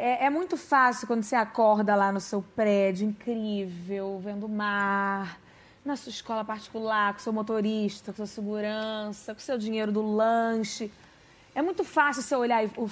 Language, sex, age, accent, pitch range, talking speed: Portuguese, female, 20-39, Brazilian, 210-270 Hz, 170 wpm